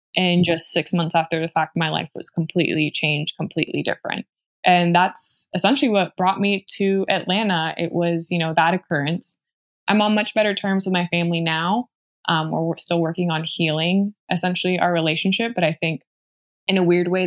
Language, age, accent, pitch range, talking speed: English, 20-39, American, 165-210 Hz, 185 wpm